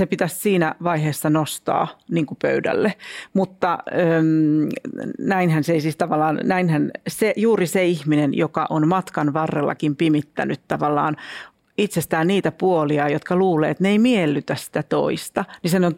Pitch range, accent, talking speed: 160-210 Hz, native, 140 wpm